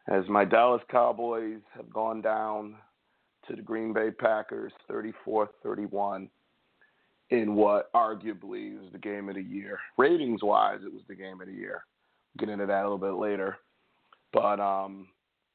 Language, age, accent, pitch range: English, 40-59, American, 105-150 Hz